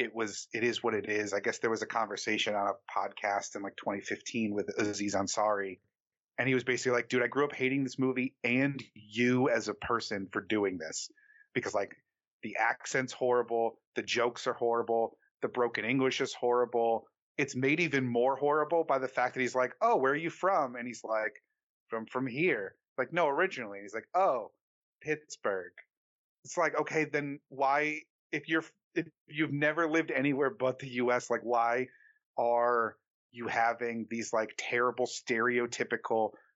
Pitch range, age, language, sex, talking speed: 115-140 Hz, 30-49, English, male, 180 wpm